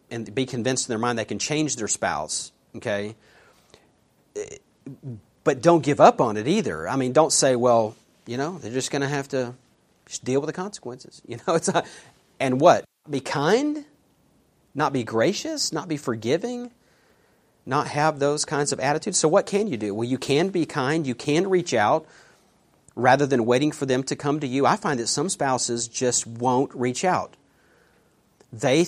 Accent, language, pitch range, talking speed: American, English, 125-195 Hz, 185 wpm